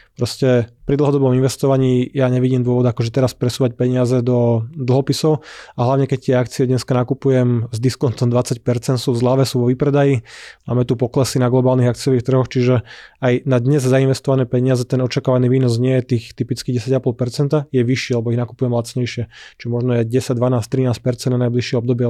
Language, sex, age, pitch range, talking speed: Slovak, male, 20-39, 125-135 Hz, 175 wpm